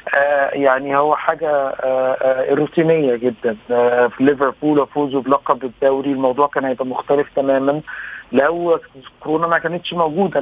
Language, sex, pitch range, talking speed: Arabic, male, 140-160 Hz, 140 wpm